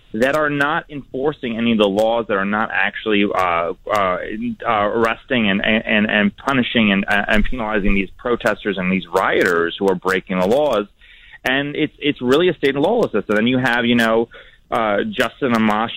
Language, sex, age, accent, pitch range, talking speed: English, male, 30-49, American, 105-145 Hz, 190 wpm